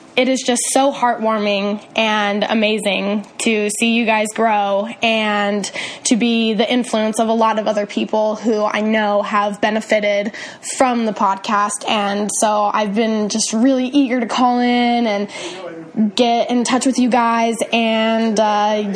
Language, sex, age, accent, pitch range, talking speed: English, female, 10-29, American, 205-245 Hz, 160 wpm